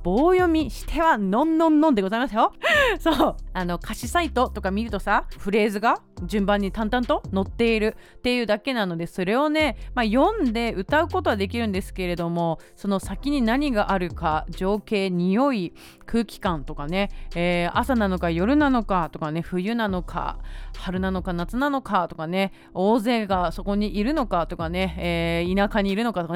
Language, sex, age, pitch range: Japanese, female, 30-49, 185-285 Hz